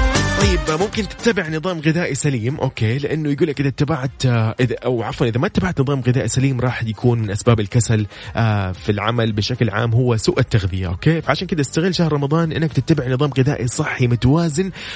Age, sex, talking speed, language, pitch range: 20-39, male, 180 wpm, Arabic, 110-135 Hz